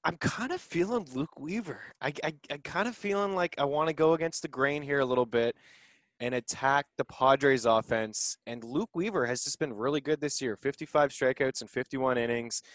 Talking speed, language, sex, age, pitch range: 205 wpm, English, male, 20-39, 105-135 Hz